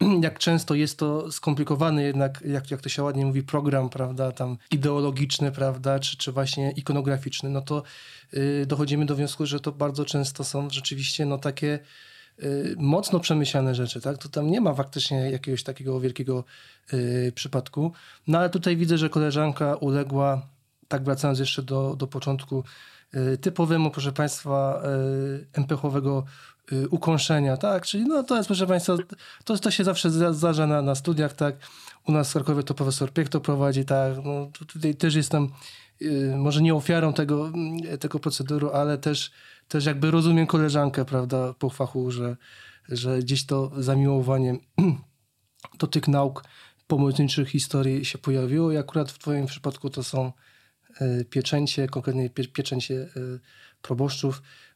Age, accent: 20-39, native